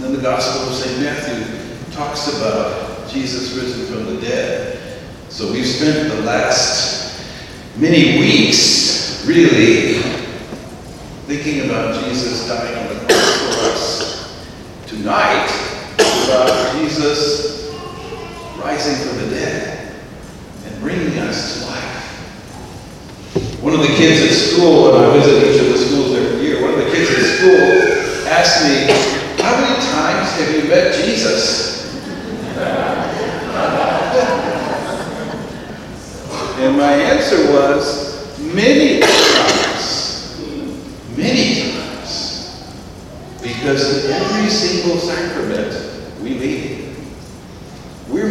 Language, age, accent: English, 50-69, American